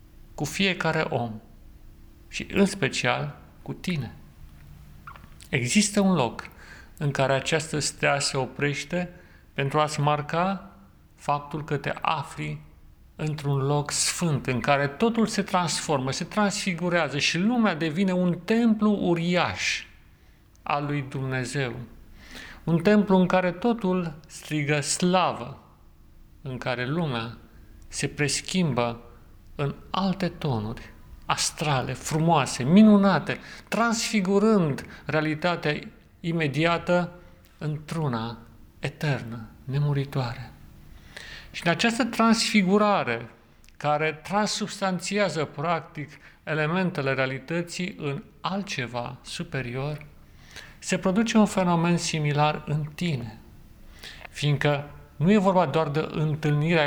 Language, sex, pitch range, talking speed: Romanian, male, 130-180 Hz, 100 wpm